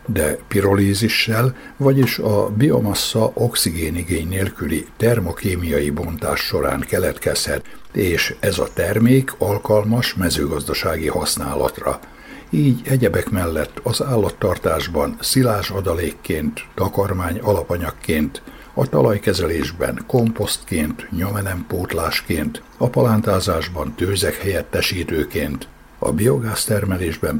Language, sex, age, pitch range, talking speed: Hungarian, male, 60-79, 85-115 Hz, 80 wpm